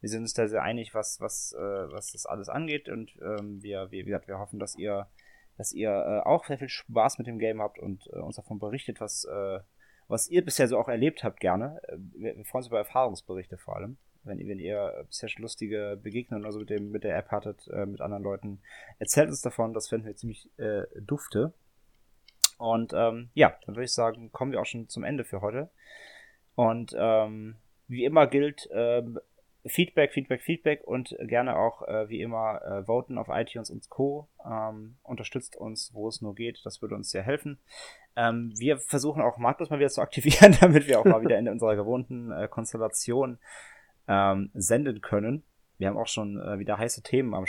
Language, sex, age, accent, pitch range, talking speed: German, male, 20-39, German, 100-125 Hz, 200 wpm